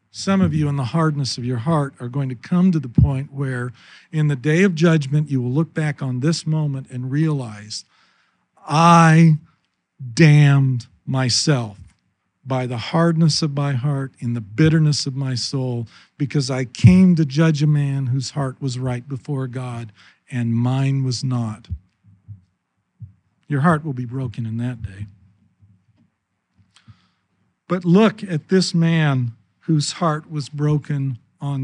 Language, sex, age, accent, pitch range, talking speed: English, male, 50-69, American, 115-160 Hz, 155 wpm